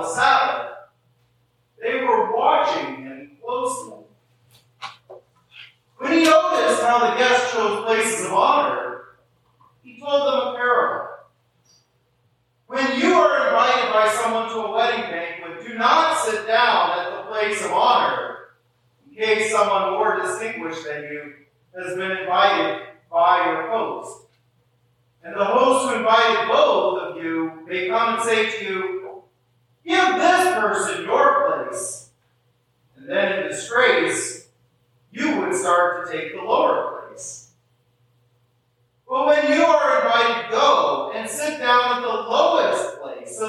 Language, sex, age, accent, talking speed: English, male, 40-59, American, 135 wpm